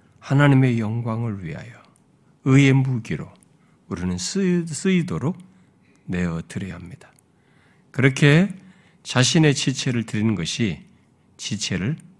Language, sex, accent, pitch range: Korean, male, native, 110-180 Hz